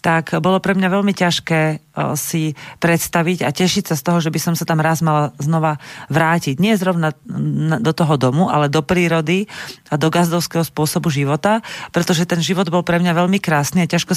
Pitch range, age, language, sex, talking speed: 155-190 Hz, 40-59, Slovak, female, 190 wpm